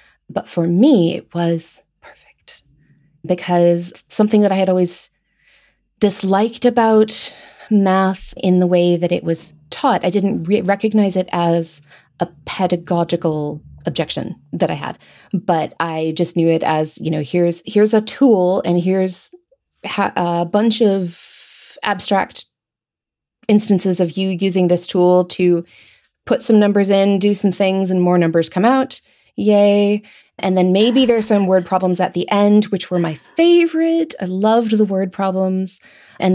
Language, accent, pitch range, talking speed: English, American, 175-205 Hz, 155 wpm